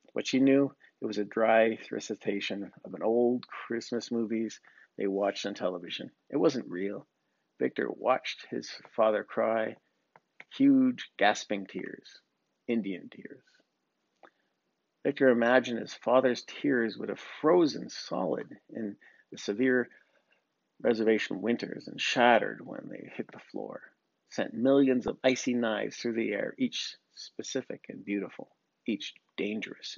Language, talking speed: English, 130 wpm